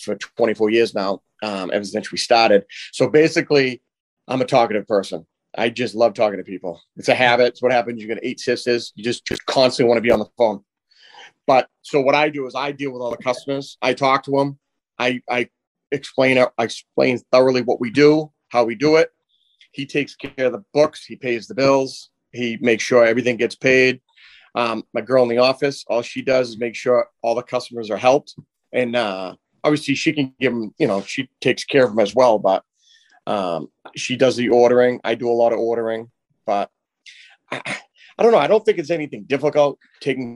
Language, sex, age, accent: English, male, 40-59, American